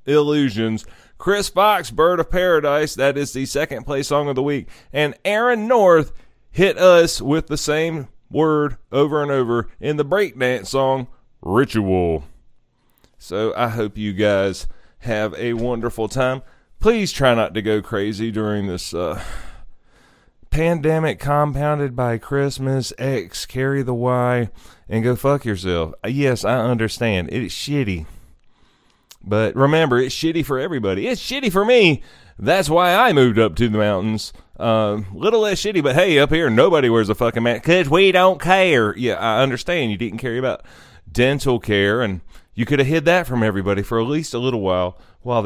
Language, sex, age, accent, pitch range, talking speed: English, male, 30-49, American, 110-150 Hz, 165 wpm